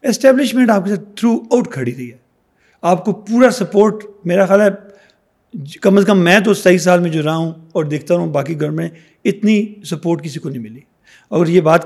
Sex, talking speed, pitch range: male, 210 wpm, 165-205 Hz